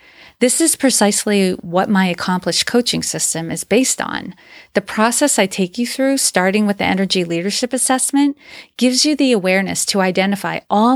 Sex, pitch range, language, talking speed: female, 180-230 Hz, English, 165 wpm